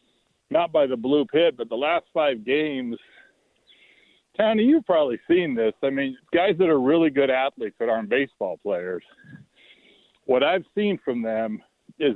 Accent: American